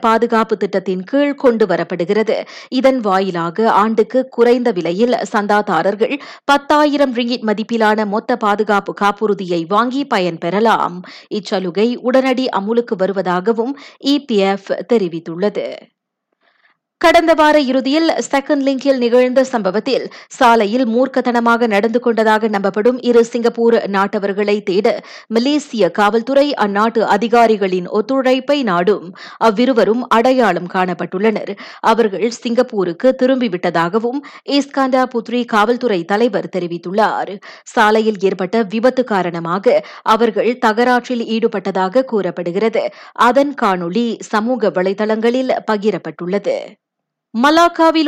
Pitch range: 200-255 Hz